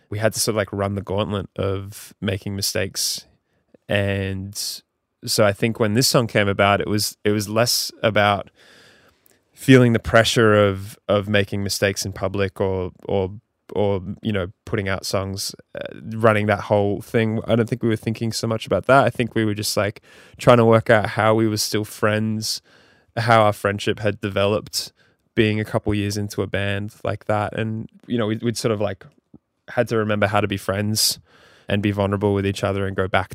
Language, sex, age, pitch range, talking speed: English, male, 10-29, 100-110 Hz, 200 wpm